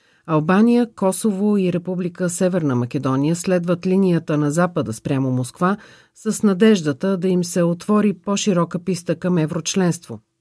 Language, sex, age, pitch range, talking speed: Bulgarian, female, 40-59, 150-195 Hz, 125 wpm